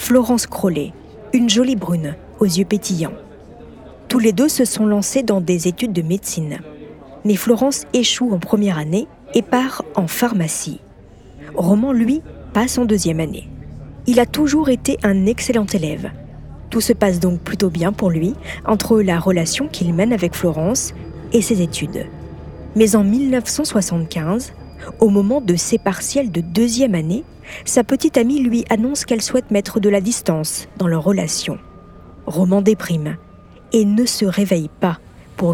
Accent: French